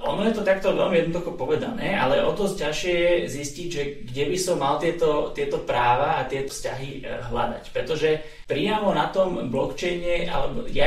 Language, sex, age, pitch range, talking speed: Slovak, male, 30-49, 135-185 Hz, 170 wpm